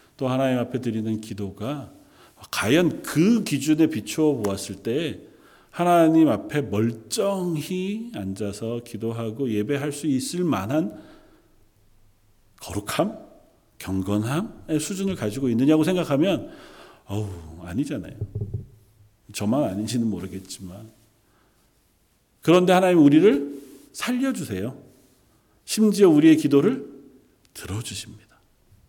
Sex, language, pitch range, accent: male, Korean, 105-155 Hz, native